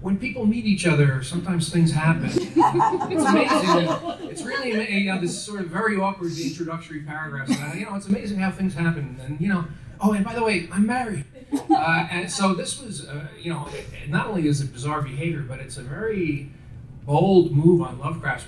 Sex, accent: male, American